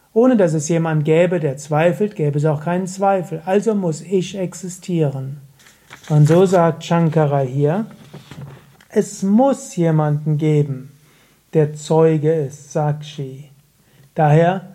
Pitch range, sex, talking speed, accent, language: 150-195 Hz, male, 125 wpm, German, German